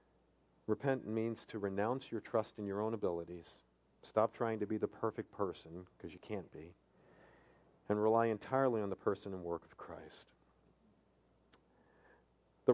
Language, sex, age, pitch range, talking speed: English, male, 50-69, 85-110 Hz, 150 wpm